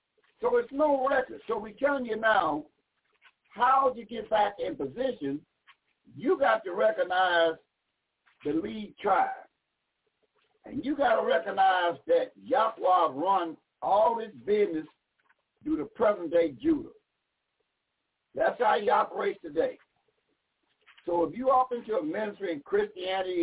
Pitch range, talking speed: 195-305 Hz, 135 wpm